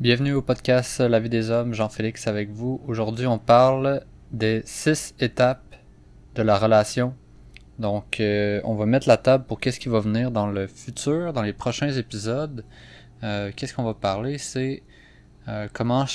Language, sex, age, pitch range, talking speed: French, male, 20-39, 105-125 Hz, 165 wpm